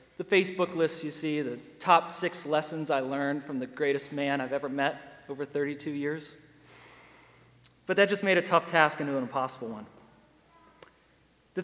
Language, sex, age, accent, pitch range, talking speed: English, male, 30-49, American, 130-170 Hz, 170 wpm